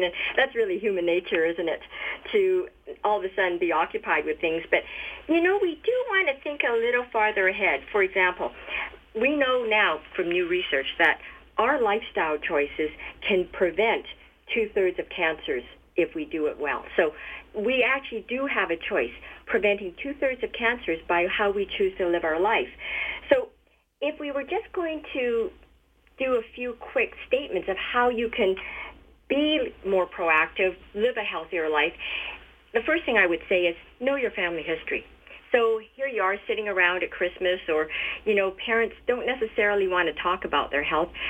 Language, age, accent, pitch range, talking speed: English, 50-69, American, 180-280 Hz, 175 wpm